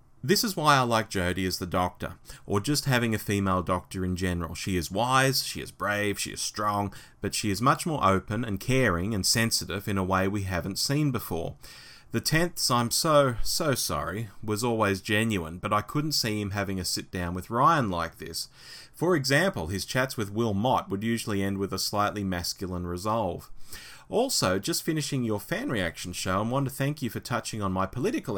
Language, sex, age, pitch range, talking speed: English, male, 30-49, 95-130 Hz, 205 wpm